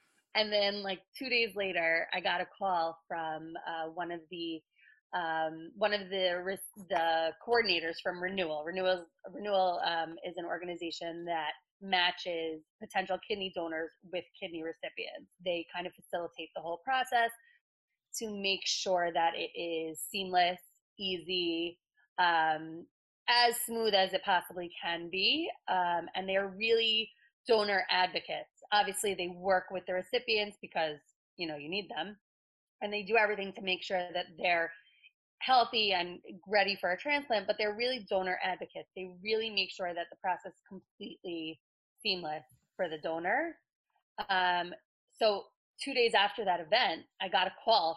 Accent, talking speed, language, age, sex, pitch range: American, 155 wpm, English, 20-39, female, 170-210 Hz